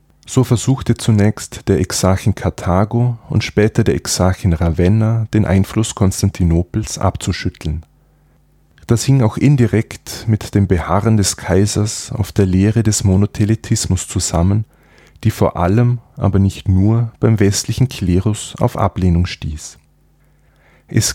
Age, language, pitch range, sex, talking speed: 20-39, German, 95-120 Hz, male, 120 wpm